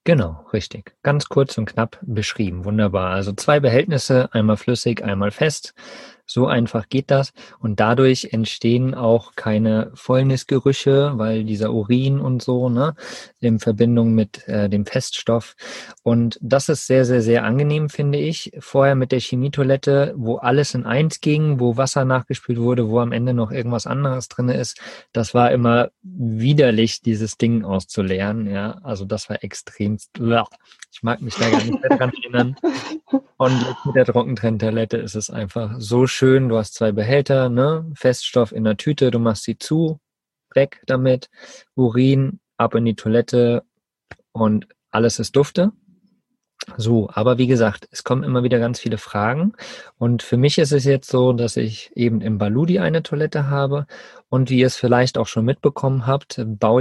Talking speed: 165 wpm